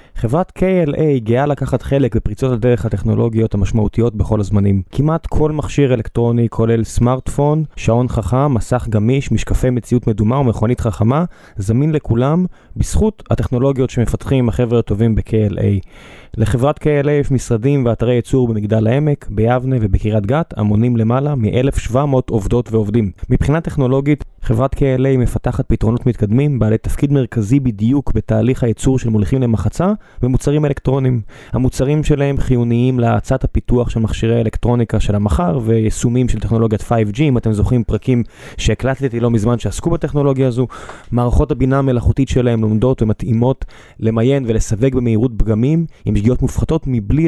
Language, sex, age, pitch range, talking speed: Hebrew, male, 20-39, 110-135 Hz, 125 wpm